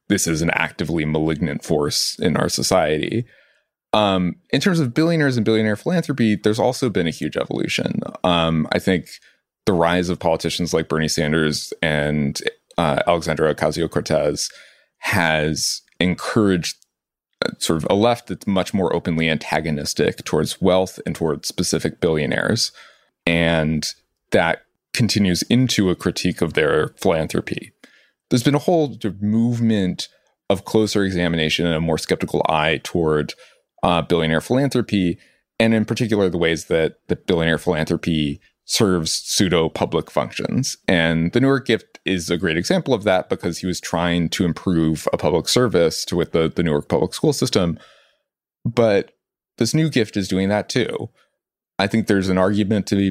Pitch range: 80-110 Hz